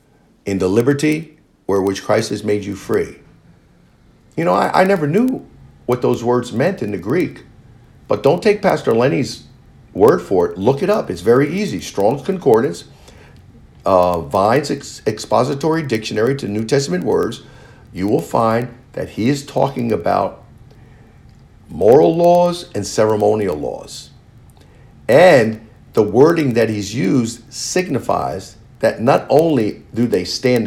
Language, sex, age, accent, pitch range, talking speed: English, male, 50-69, American, 105-135 Hz, 145 wpm